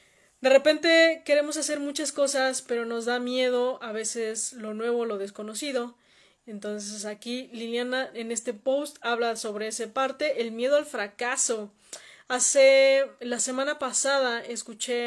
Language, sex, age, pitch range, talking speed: Spanish, female, 20-39, 225-275 Hz, 140 wpm